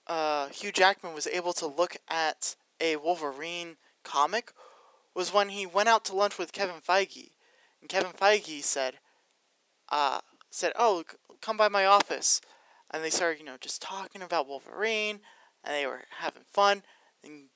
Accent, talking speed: American, 165 wpm